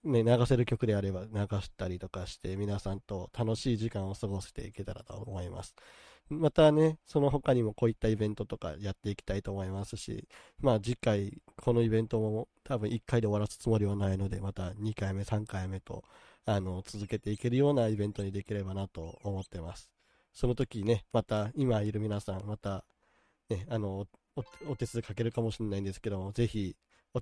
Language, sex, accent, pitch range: Japanese, male, native, 100-120 Hz